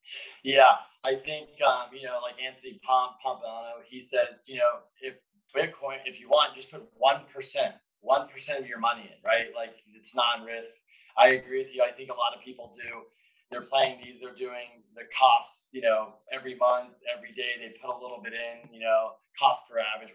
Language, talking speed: English, 195 wpm